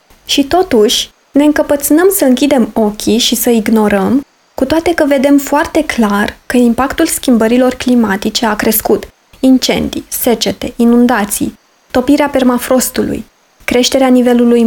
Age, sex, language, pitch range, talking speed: 20-39, female, Romanian, 235-290 Hz, 120 wpm